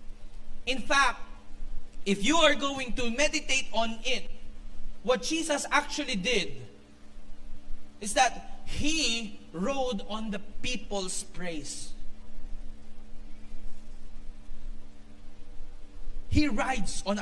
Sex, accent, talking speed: male, Filipino, 85 wpm